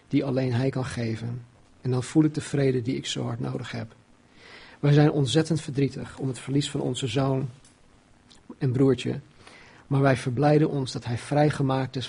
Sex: male